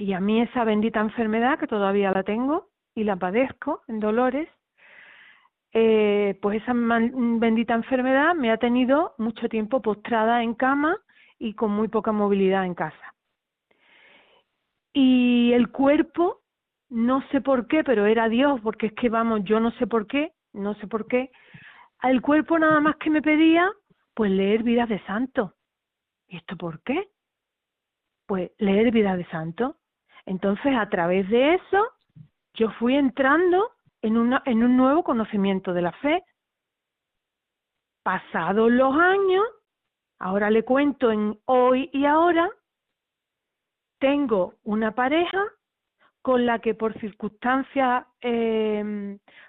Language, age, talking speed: Spanish, 40-59, 140 wpm